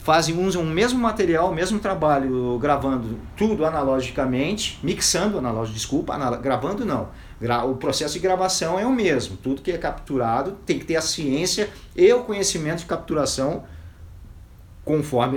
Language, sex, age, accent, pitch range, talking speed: Portuguese, male, 40-59, Brazilian, 130-205 Hz, 150 wpm